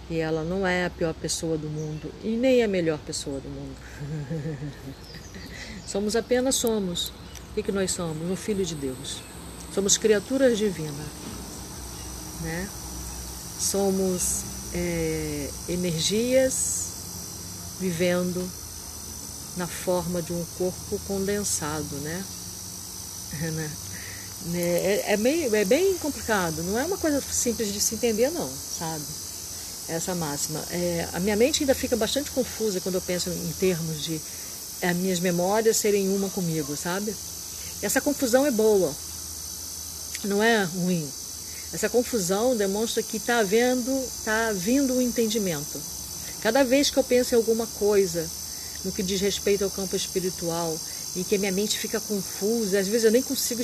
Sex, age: female, 40-59